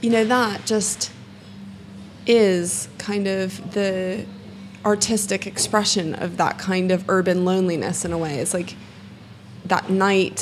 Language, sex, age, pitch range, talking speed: English, female, 20-39, 185-225 Hz, 130 wpm